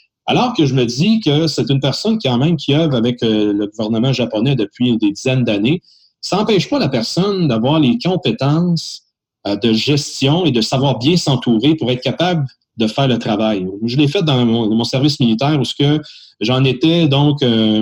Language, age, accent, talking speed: French, 40-59, Canadian, 195 wpm